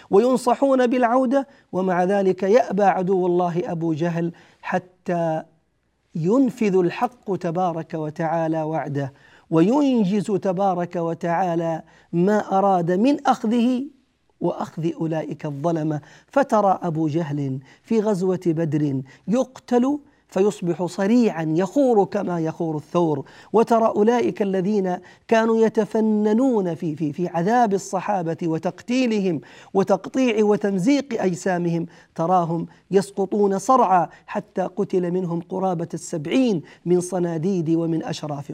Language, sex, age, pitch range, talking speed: Arabic, male, 40-59, 160-210 Hz, 100 wpm